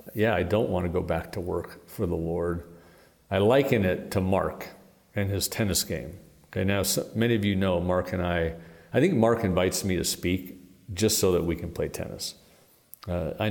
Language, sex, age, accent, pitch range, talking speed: English, male, 50-69, American, 85-105 Hz, 205 wpm